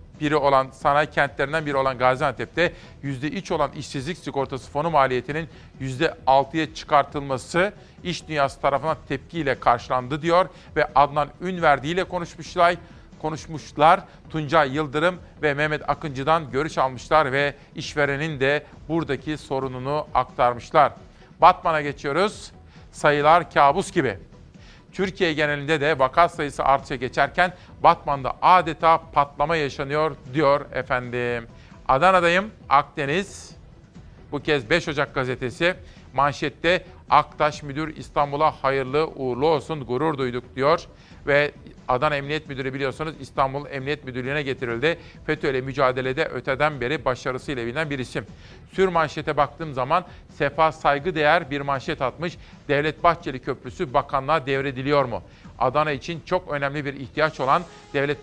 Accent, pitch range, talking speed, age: native, 135-160 Hz, 120 wpm, 50-69